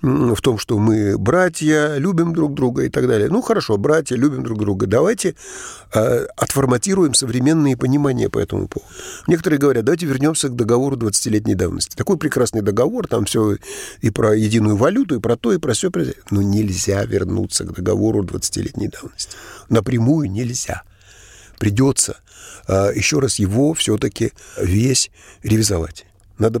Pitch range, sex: 100-125 Hz, male